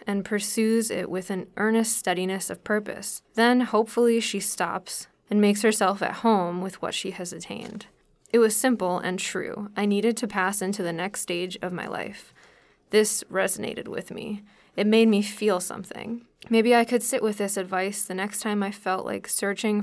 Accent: American